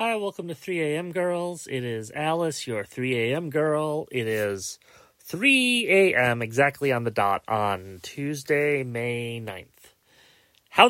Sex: male